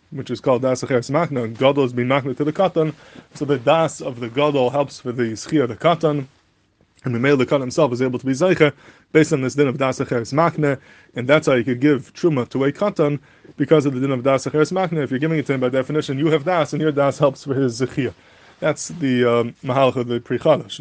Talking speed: 255 wpm